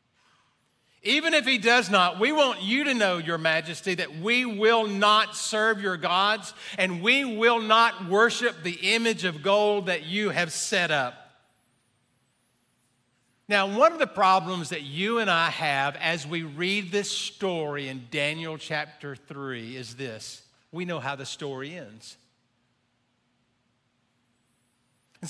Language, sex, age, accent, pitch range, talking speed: English, male, 50-69, American, 155-225 Hz, 145 wpm